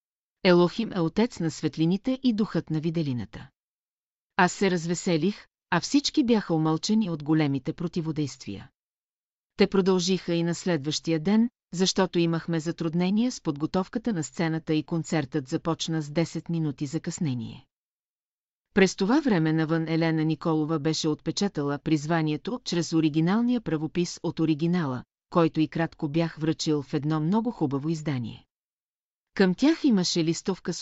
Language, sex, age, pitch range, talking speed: Bulgarian, female, 40-59, 155-185 Hz, 135 wpm